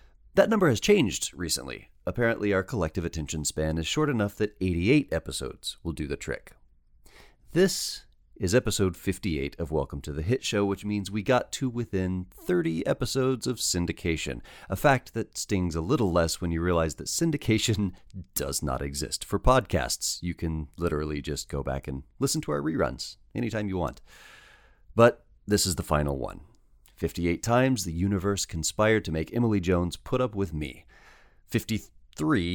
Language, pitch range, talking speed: English, 80-110 Hz, 170 wpm